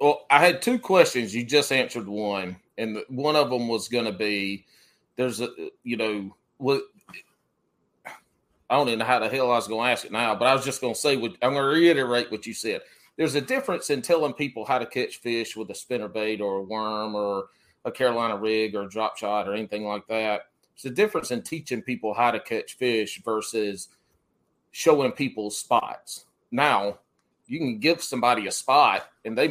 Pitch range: 110-145 Hz